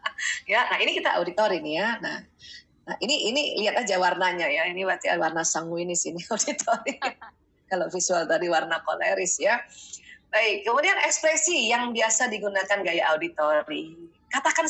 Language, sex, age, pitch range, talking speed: Indonesian, female, 20-39, 210-295 Hz, 145 wpm